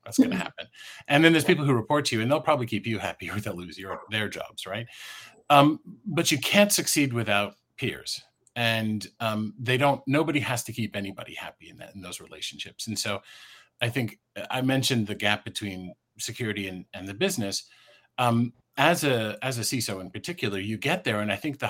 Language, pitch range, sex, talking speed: English, 105-130 Hz, male, 210 wpm